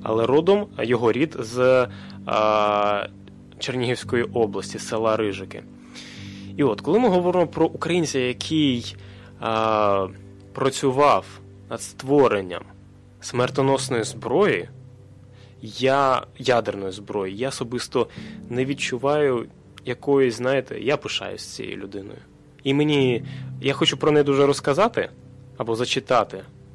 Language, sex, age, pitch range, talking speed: Russian, male, 20-39, 105-135 Hz, 105 wpm